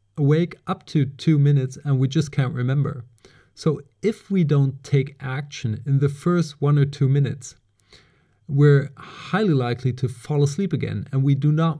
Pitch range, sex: 120-145 Hz, male